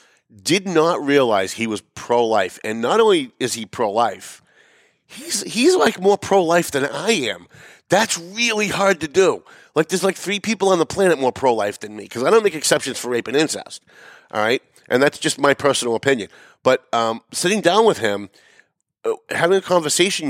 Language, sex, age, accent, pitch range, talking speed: English, male, 30-49, American, 120-170 Hz, 185 wpm